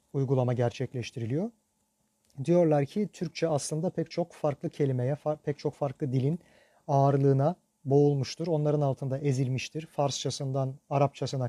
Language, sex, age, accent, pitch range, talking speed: Turkish, male, 40-59, native, 125-165 Hz, 110 wpm